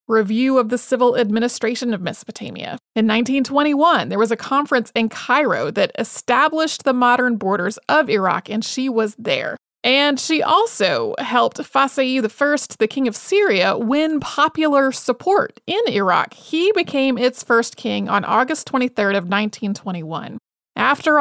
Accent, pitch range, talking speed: American, 220-270 Hz, 145 wpm